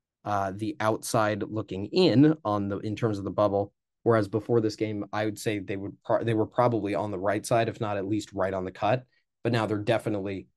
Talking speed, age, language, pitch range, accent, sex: 225 wpm, 20-39, English, 105-120 Hz, American, male